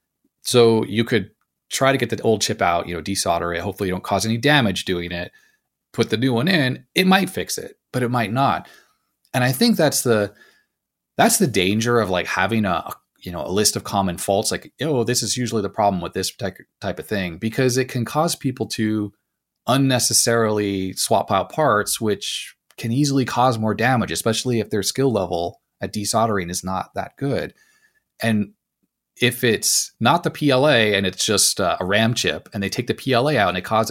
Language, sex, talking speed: English, male, 200 wpm